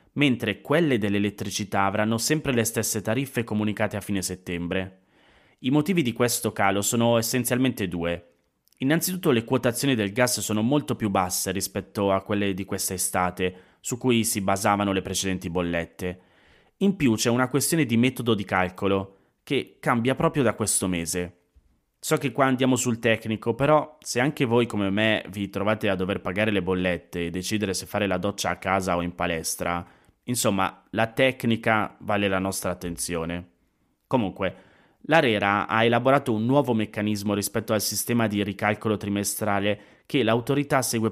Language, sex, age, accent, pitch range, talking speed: Italian, male, 20-39, native, 95-125 Hz, 160 wpm